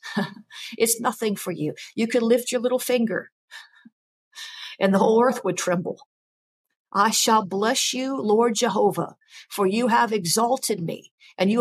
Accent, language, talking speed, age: American, English, 150 wpm, 50-69